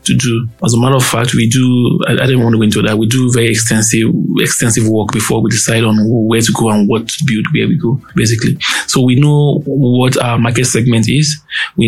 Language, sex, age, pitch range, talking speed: English, male, 20-39, 115-135 Hz, 230 wpm